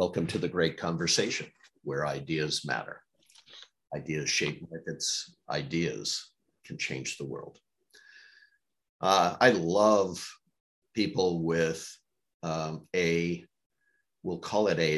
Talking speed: 110 wpm